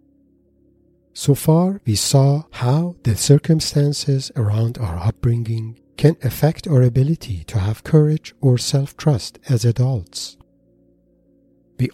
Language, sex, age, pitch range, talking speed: English, male, 50-69, 110-140 Hz, 110 wpm